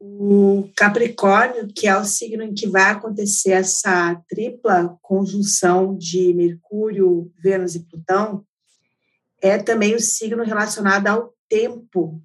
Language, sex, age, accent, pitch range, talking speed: Portuguese, female, 50-69, Brazilian, 185-230 Hz, 120 wpm